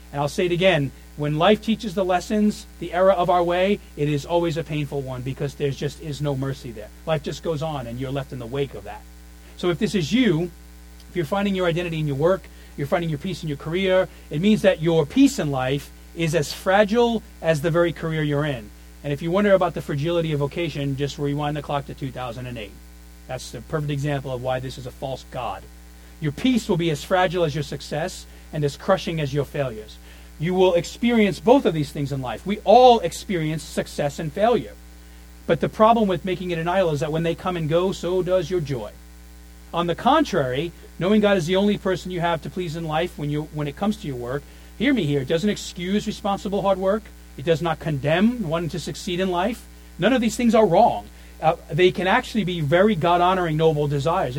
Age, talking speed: 40-59, 230 wpm